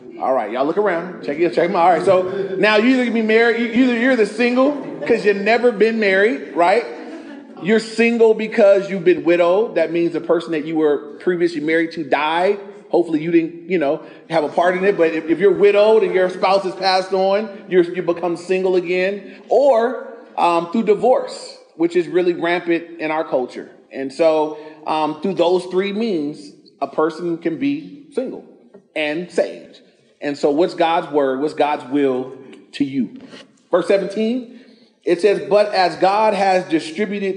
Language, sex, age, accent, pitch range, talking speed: English, male, 30-49, American, 165-215 Hz, 185 wpm